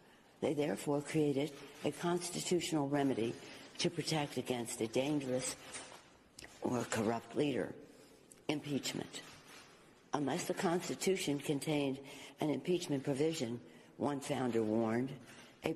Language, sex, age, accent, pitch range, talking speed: English, female, 60-79, American, 125-155 Hz, 100 wpm